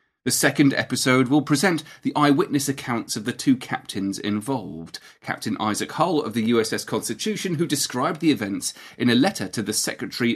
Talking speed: 175 wpm